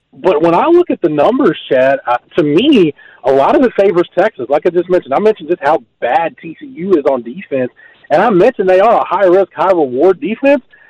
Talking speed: 215 wpm